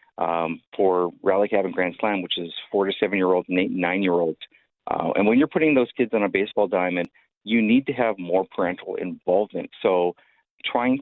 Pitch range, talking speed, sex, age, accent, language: 95-115 Hz, 205 wpm, male, 40-59, American, English